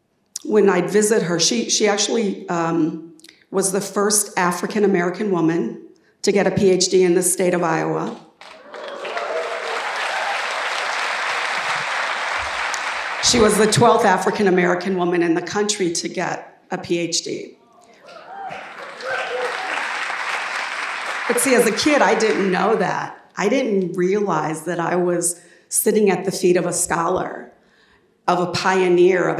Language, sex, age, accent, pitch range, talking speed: English, female, 50-69, American, 175-200 Hz, 125 wpm